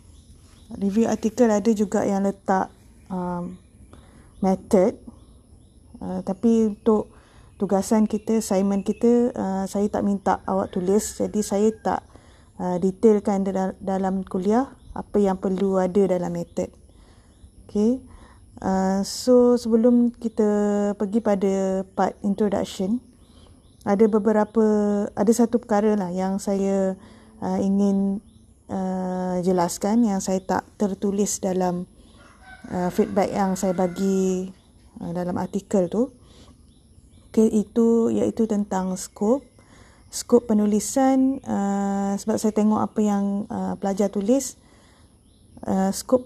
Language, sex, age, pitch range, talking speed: Malay, female, 20-39, 190-220 Hz, 115 wpm